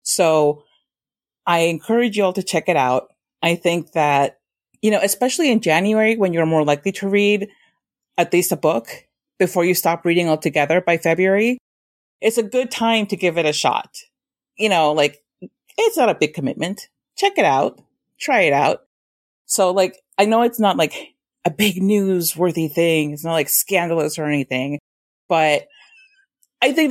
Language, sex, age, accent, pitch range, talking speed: English, female, 30-49, American, 155-255 Hz, 170 wpm